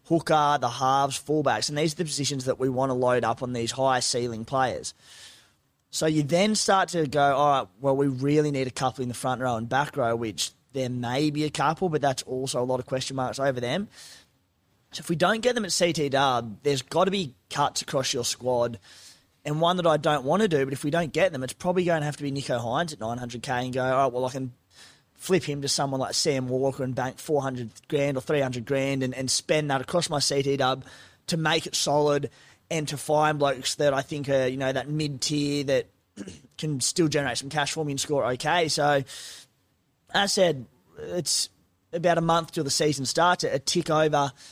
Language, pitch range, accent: English, 130-155 Hz, Australian